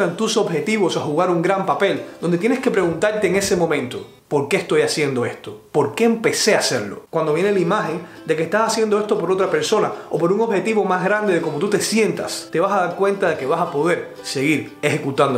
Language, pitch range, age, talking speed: Spanish, 165-205 Hz, 30-49, 230 wpm